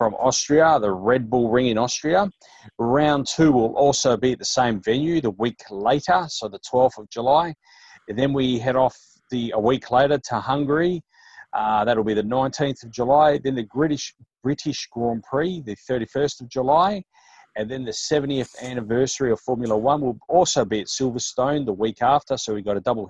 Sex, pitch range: male, 110-140 Hz